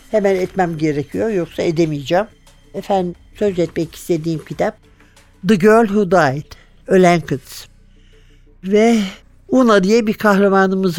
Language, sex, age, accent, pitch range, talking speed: Turkish, male, 60-79, native, 170-220 Hz, 115 wpm